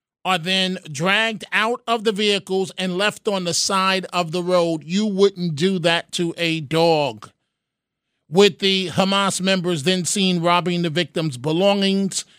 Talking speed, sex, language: 155 wpm, male, English